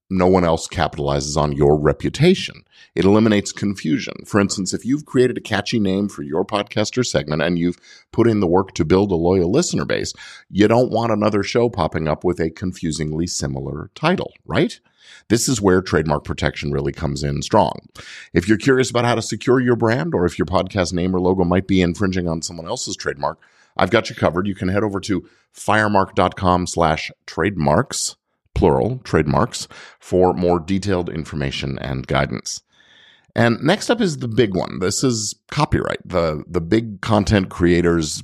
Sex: male